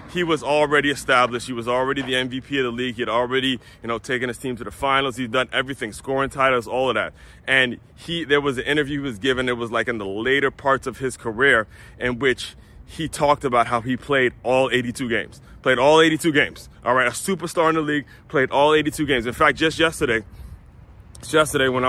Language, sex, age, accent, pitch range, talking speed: English, male, 30-49, American, 115-140 Hz, 230 wpm